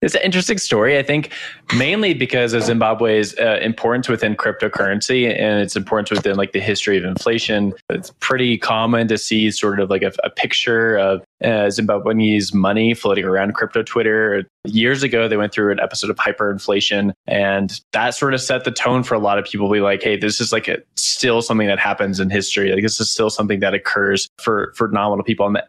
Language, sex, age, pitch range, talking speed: English, male, 20-39, 100-115 Hz, 210 wpm